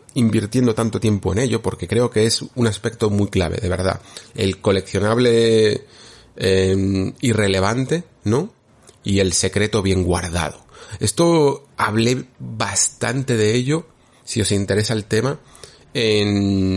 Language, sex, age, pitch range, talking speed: Spanish, male, 30-49, 95-120 Hz, 130 wpm